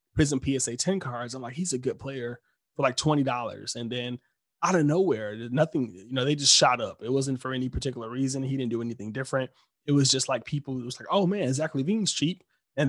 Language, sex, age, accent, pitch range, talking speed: English, male, 20-39, American, 120-140 Hz, 235 wpm